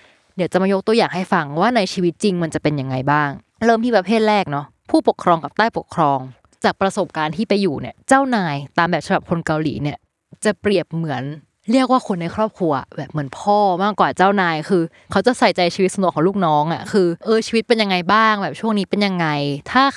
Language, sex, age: Thai, female, 20-39